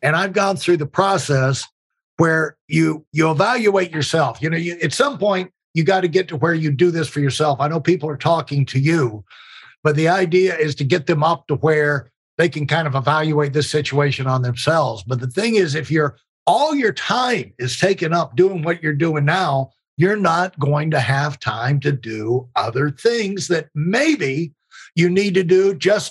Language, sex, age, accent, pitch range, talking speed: English, male, 60-79, American, 145-190 Hz, 200 wpm